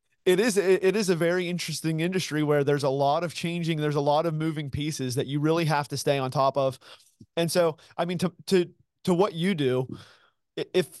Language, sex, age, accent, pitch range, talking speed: English, male, 30-49, American, 130-160 Hz, 220 wpm